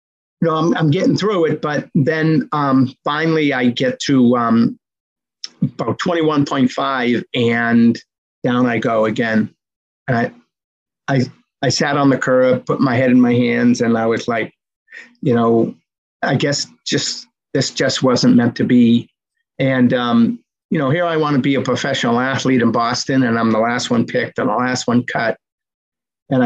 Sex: male